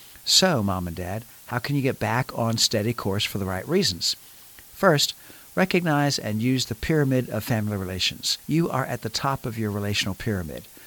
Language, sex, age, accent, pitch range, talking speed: English, male, 50-69, American, 105-135 Hz, 190 wpm